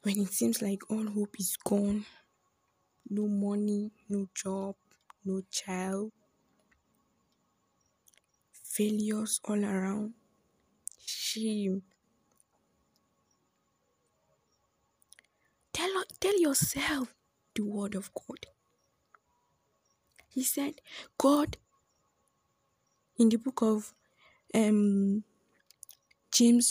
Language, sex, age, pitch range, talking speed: English, female, 20-39, 205-255 Hz, 75 wpm